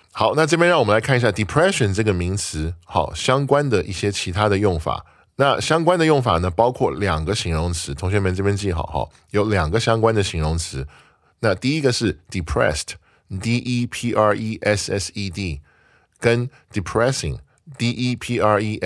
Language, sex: Chinese, male